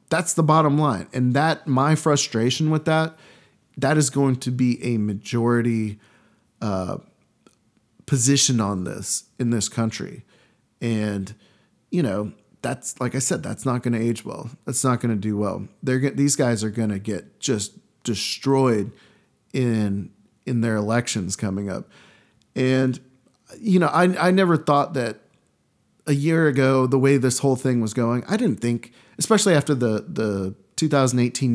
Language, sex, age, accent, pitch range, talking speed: English, male, 40-59, American, 110-140 Hz, 160 wpm